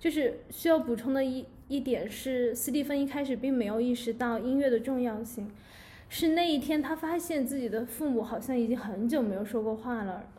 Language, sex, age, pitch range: Chinese, female, 10-29, 225-270 Hz